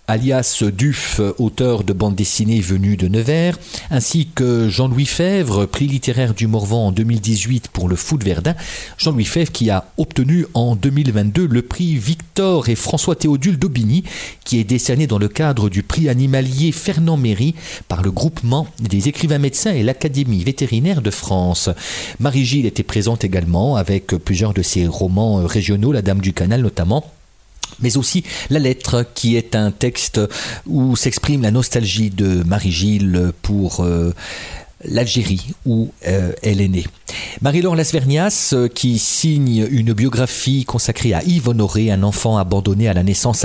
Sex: male